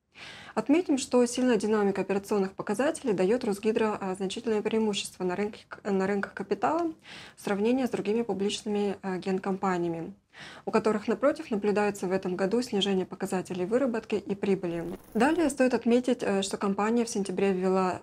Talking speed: 135 wpm